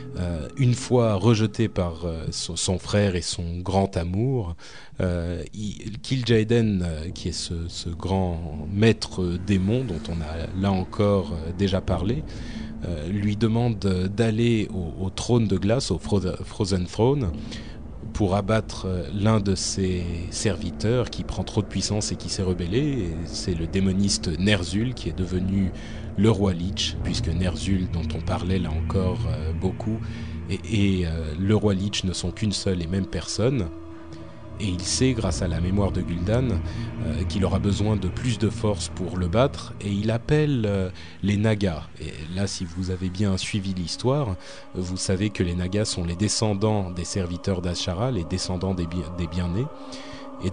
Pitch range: 90-110 Hz